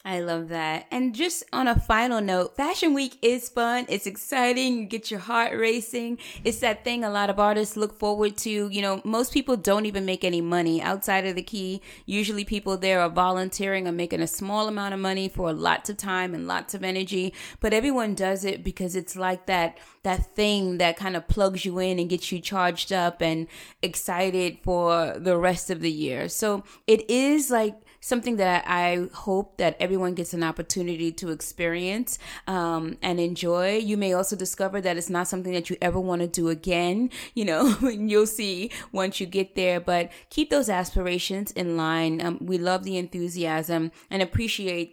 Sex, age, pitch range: female, 20-39, 175-210 Hz